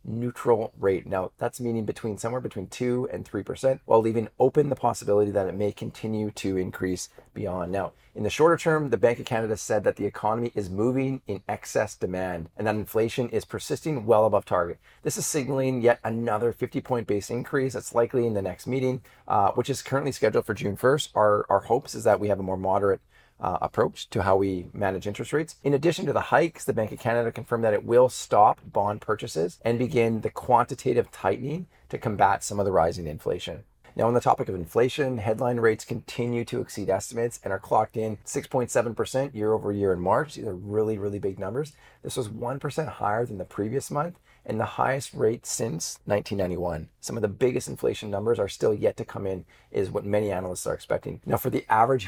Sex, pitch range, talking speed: male, 100-125 Hz, 210 wpm